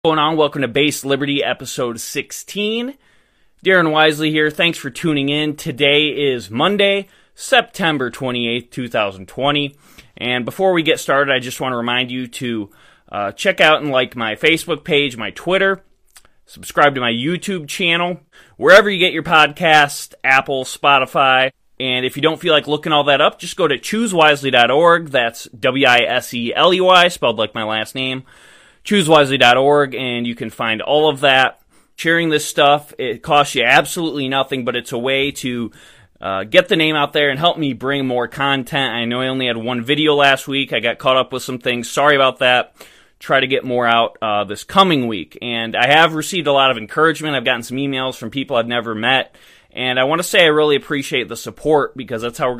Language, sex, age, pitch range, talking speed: English, male, 20-39, 120-155 Hz, 190 wpm